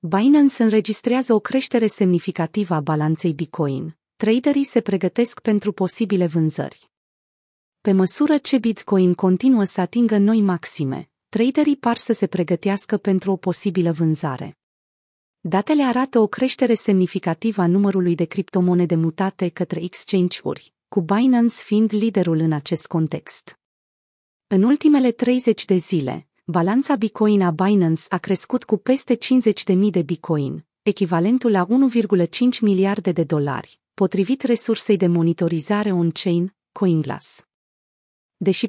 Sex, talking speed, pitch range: female, 125 wpm, 175-230 Hz